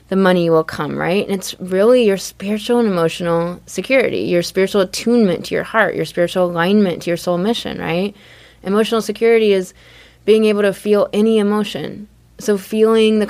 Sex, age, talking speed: female, 20-39, 175 wpm